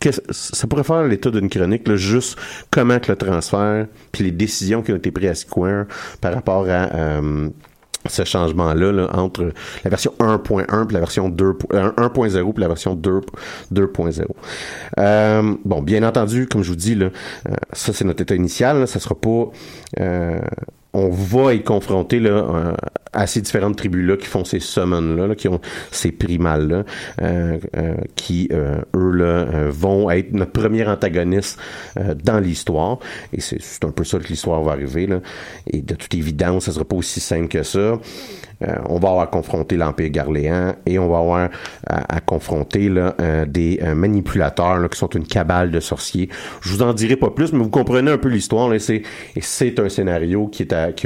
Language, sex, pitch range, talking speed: French, male, 85-105 Hz, 195 wpm